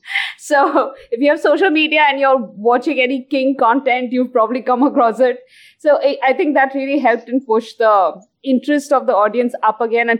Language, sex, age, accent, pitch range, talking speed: English, female, 20-39, Indian, 220-270 Hz, 195 wpm